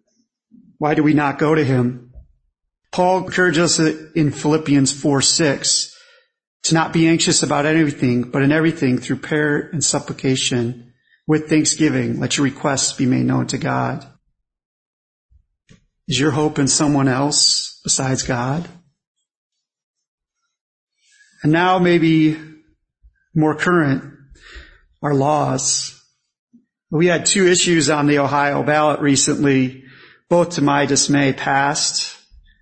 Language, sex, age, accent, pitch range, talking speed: English, male, 40-59, American, 135-160 Hz, 120 wpm